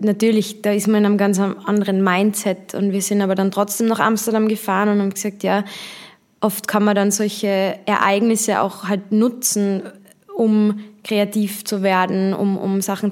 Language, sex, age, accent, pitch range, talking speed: German, female, 20-39, German, 195-215 Hz, 175 wpm